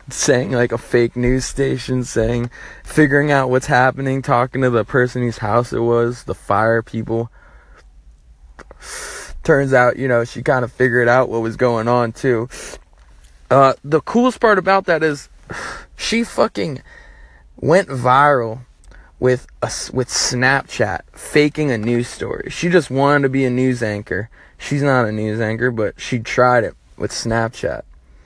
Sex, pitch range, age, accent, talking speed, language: male, 105-135 Hz, 20-39, American, 155 wpm, English